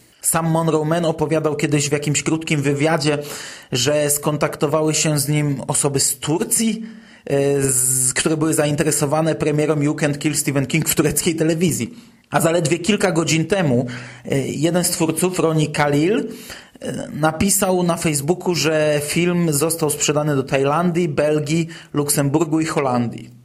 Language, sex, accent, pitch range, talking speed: Polish, male, native, 145-180 Hz, 135 wpm